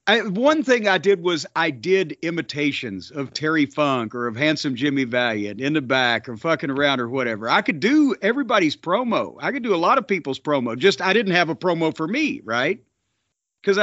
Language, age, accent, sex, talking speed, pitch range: English, 50-69, American, male, 205 wpm, 150-205 Hz